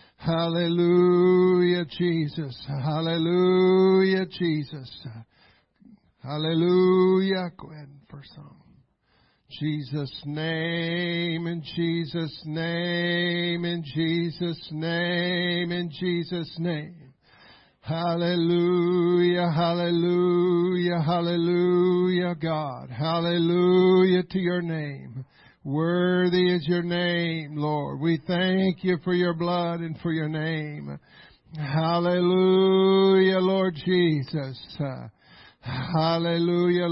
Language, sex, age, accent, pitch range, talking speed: English, male, 50-69, American, 155-180 Hz, 80 wpm